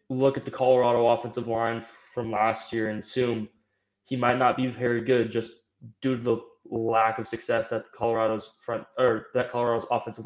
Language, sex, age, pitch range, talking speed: English, male, 20-39, 110-120 Hz, 185 wpm